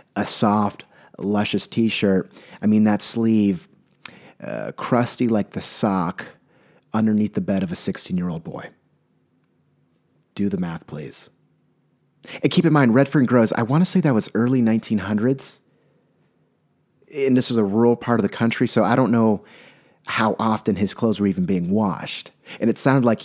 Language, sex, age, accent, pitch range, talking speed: English, male, 30-49, American, 100-130 Hz, 165 wpm